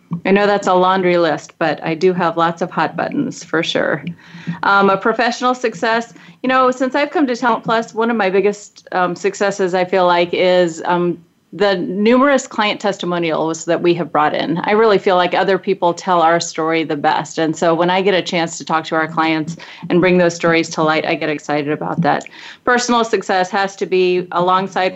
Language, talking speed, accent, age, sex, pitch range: English, 210 wpm, American, 30-49, female, 170-200 Hz